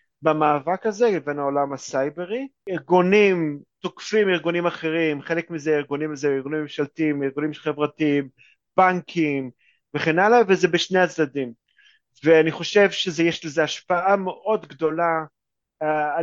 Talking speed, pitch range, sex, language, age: 105 wpm, 150-180 Hz, male, Hebrew, 30-49